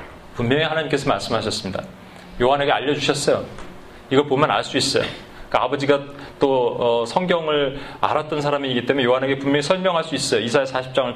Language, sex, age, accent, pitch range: Korean, male, 30-49, native, 145-200 Hz